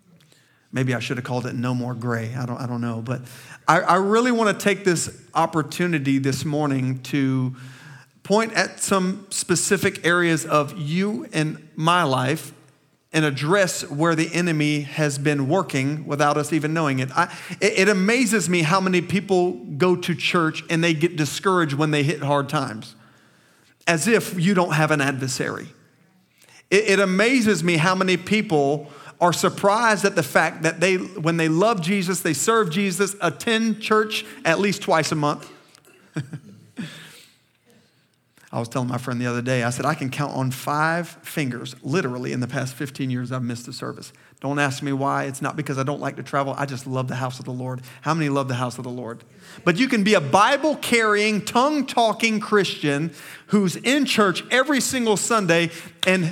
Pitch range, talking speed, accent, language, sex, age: 140-190 Hz, 185 wpm, American, English, male, 40-59